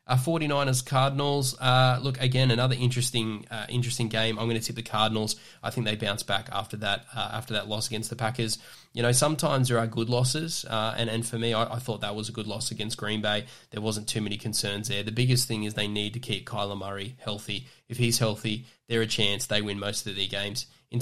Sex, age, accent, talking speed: male, 10-29, Australian, 235 wpm